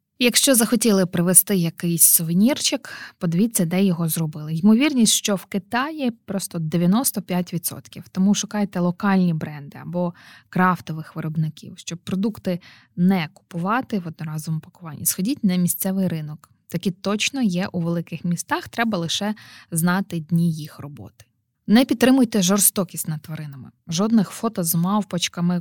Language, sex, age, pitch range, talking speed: Ukrainian, female, 20-39, 165-205 Hz, 125 wpm